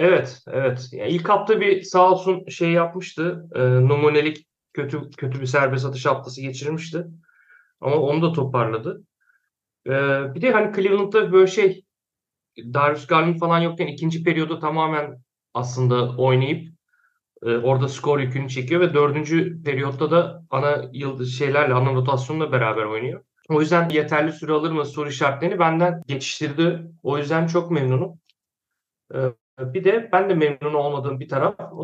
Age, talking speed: 40-59, 150 wpm